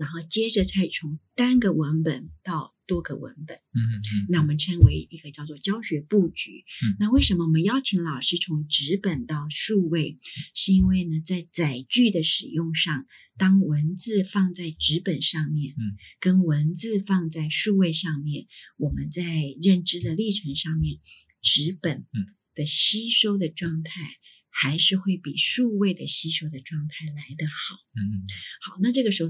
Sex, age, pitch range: female, 30-49, 150-190 Hz